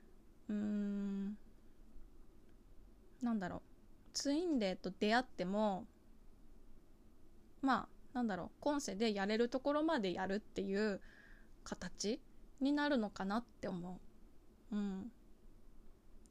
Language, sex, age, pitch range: Japanese, female, 20-39, 195-260 Hz